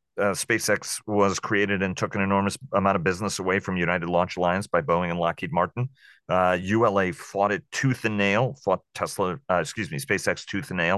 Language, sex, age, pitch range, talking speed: English, male, 40-59, 90-105 Hz, 200 wpm